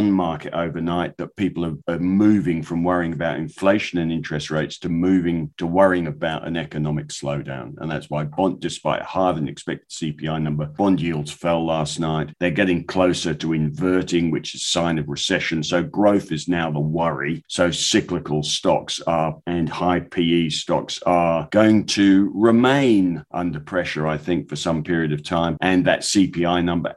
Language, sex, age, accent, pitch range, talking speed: English, male, 50-69, British, 80-95 Hz, 180 wpm